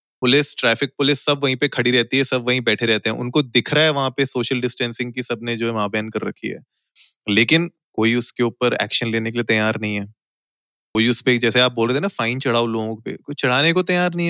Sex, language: male, Hindi